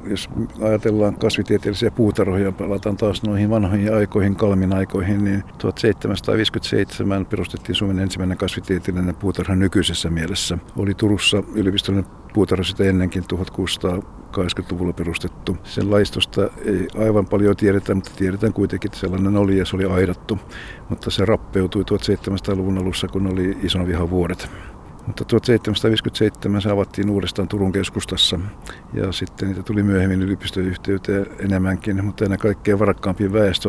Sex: male